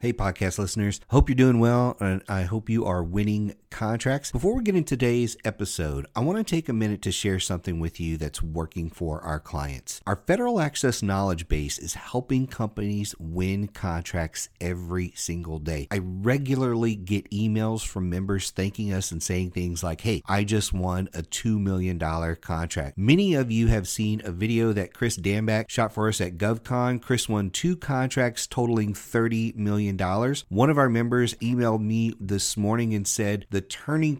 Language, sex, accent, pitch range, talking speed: English, male, American, 90-120 Hz, 185 wpm